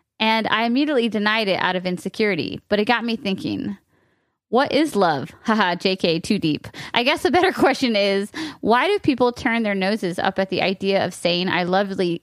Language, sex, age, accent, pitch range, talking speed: English, female, 20-39, American, 195-235 Hz, 195 wpm